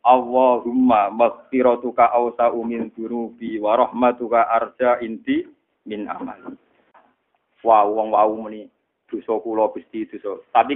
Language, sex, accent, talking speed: Indonesian, male, native, 105 wpm